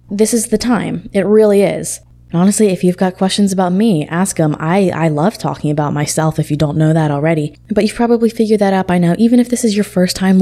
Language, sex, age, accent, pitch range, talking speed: English, female, 20-39, American, 160-200 Hz, 250 wpm